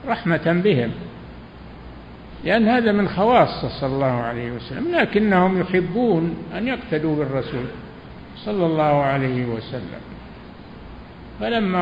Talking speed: 100 wpm